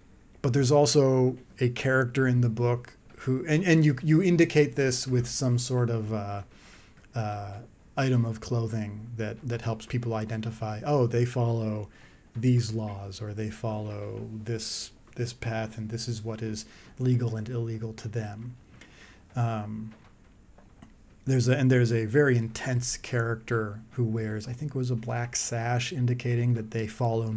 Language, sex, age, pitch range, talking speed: English, male, 30-49, 110-125 Hz, 160 wpm